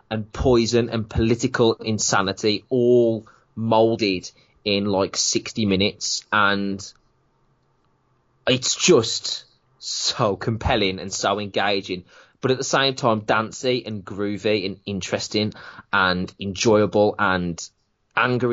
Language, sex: English, male